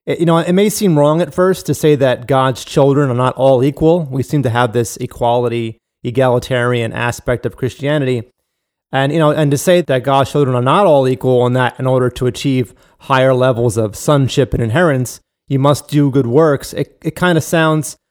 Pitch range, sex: 125-150 Hz, male